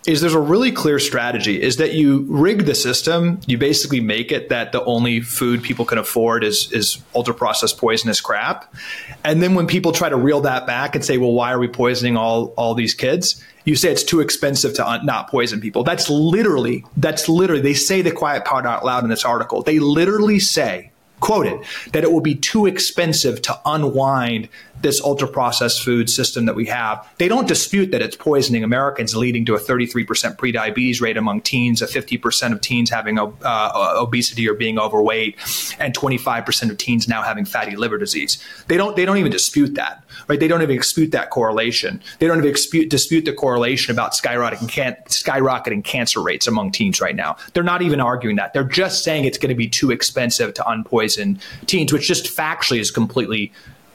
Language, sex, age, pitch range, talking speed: English, male, 30-49, 115-160 Hz, 195 wpm